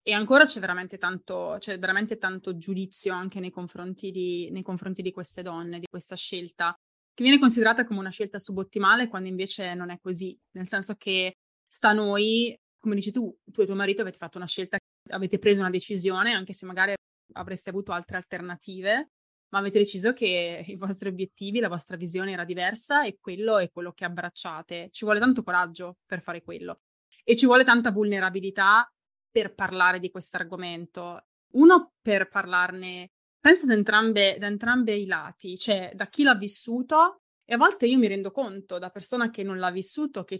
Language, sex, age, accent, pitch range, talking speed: Italian, female, 20-39, native, 185-220 Hz, 185 wpm